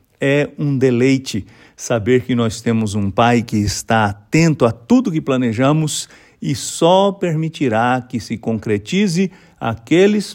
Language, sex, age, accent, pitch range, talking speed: English, male, 50-69, Brazilian, 110-140 Hz, 135 wpm